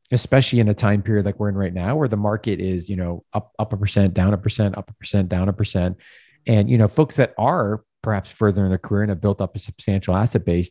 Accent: American